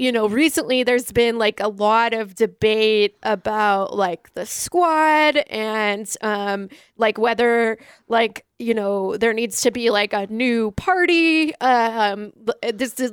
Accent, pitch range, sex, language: American, 210-265 Hz, female, English